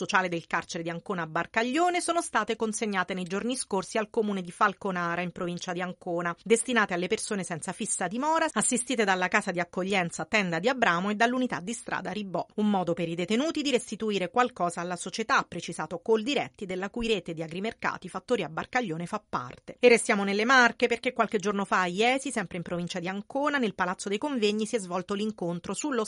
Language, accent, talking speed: Italian, native, 200 wpm